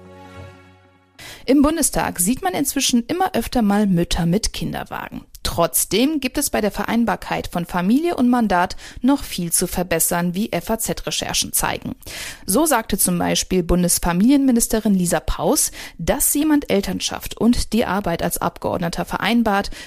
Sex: female